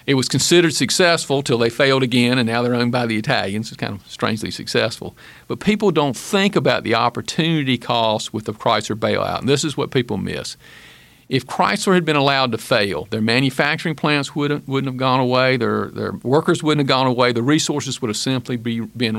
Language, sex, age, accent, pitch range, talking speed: English, male, 50-69, American, 125-150 Hz, 210 wpm